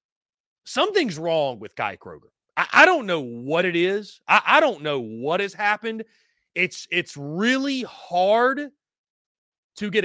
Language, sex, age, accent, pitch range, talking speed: English, male, 30-49, American, 160-225 Hz, 150 wpm